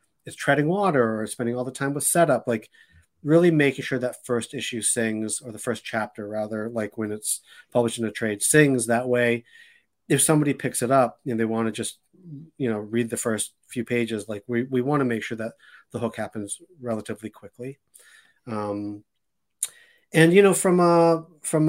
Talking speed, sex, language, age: 195 wpm, male, English, 30-49